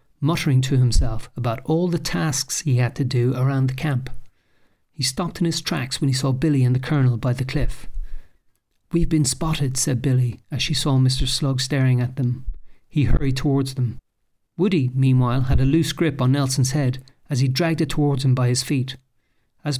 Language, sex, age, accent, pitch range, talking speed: English, male, 40-59, Irish, 130-160 Hz, 195 wpm